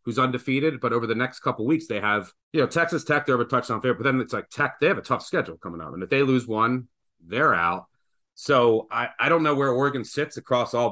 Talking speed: 270 wpm